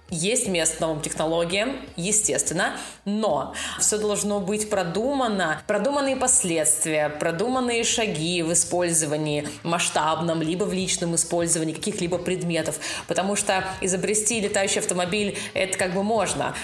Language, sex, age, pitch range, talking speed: Russian, female, 20-39, 170-210 Hz, 115 wpm